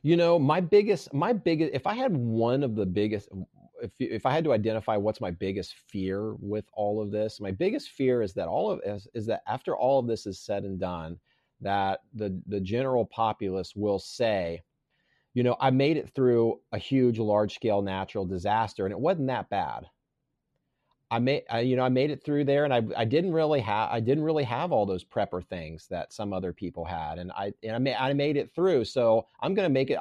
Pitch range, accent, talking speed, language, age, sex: 100-130 Hz, American, 220 wpm, English, 30-49, male